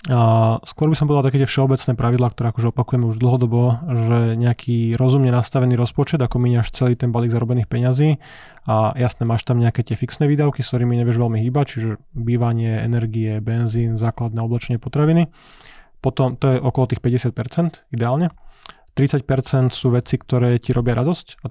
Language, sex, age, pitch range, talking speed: Slovak, male, 20-39, 120-130 Hz, 165 wpm